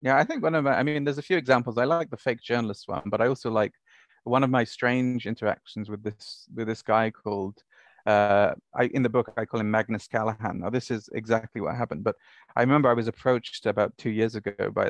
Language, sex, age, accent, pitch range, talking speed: English, male, 30-49, British, 110-130 Hz, 240 wpm